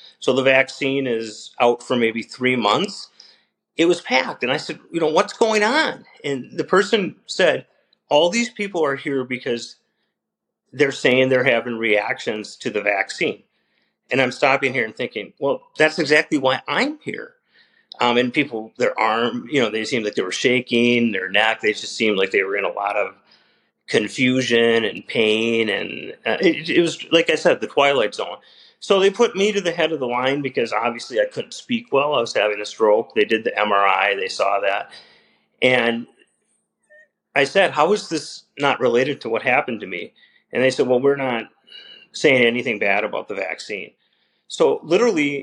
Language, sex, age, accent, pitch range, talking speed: English, male, 40-59, American, 120-200 Hz, 190 wpm